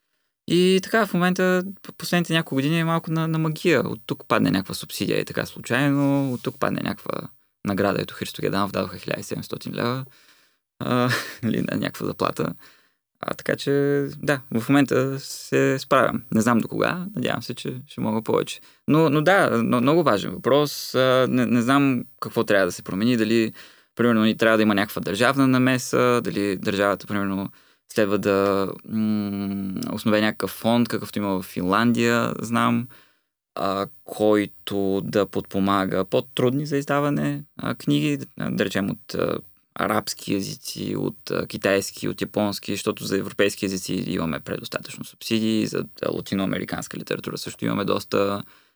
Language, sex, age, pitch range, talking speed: Bulgarian, male, 20-39, 100-135 Hz, 155 wpm